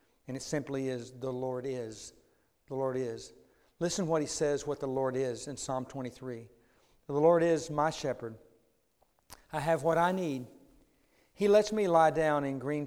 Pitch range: 130-155 Hz